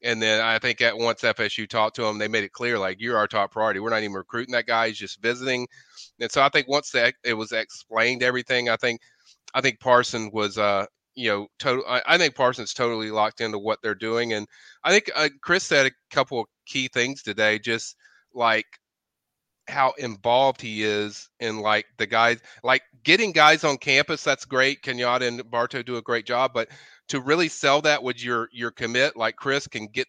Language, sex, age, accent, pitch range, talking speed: English, male, 30-49, American, 115-130 Hz, 215 wpm